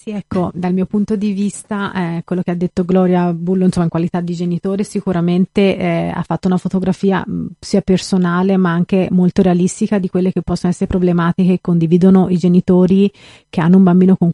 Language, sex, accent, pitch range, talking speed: Italian, female, native, 180-195 Hz, 195 wpm